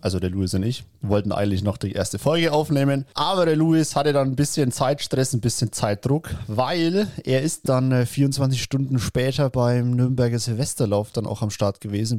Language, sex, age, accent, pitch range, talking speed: German, male, 30-49, German, 110-140 Hz, 185 wpm